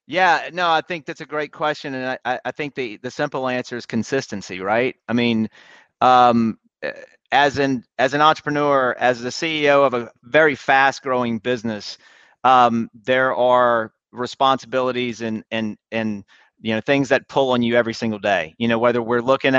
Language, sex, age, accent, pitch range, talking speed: English, male, 40-59, American, 120-140 Hz, 180 wpm